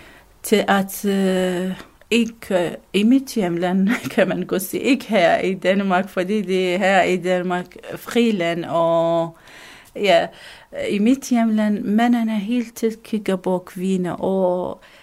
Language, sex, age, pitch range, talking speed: Danish, female, 40-59, 175-220 Hz, 130 wpm